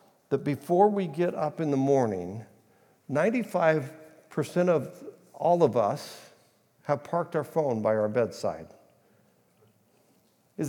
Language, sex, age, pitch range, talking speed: English, male, 60-79, 120-170 Hz, 120 wpm